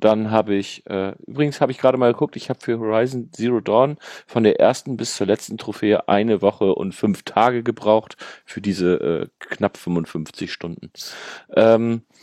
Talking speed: 175 wpm